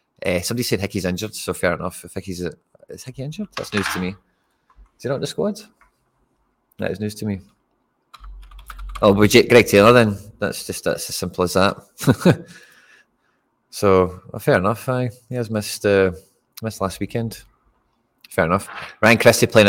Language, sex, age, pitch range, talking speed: English, male, 20-39, 95-115 Hz, 180 wpm